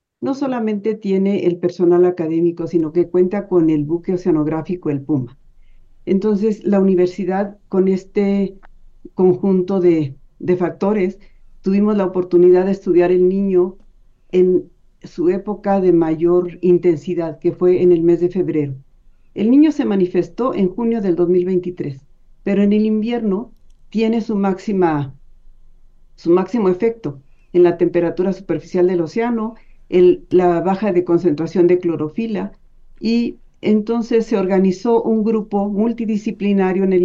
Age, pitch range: 60-79, 175-205 Hz